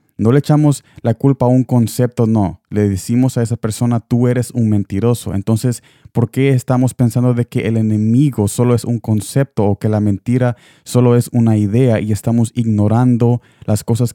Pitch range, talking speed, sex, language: 105-120 Hz, 185 wpm, male, Spanish